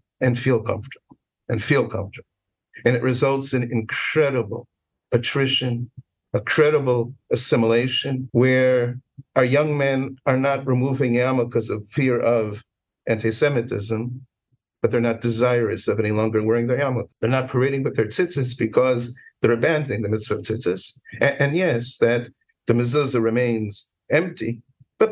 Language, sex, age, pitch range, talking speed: English, male, 50-69, 115-130 Hz, 140 wpm